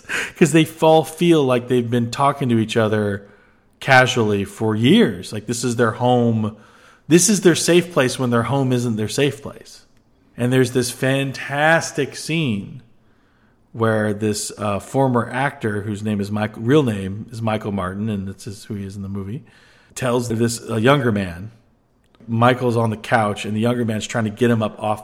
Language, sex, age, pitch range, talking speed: English, male, 40-59, 105-125 Hz, 190 wpm